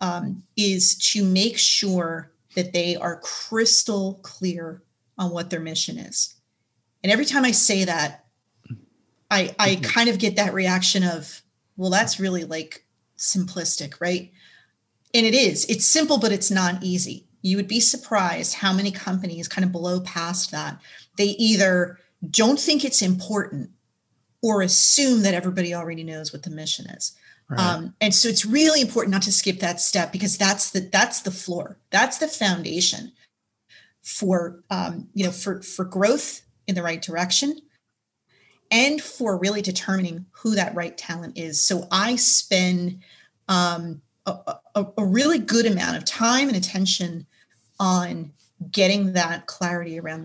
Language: English